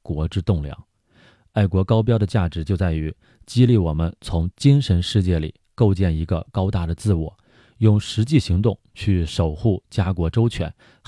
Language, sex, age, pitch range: Chinese, male, 30-49, 85-110 Hz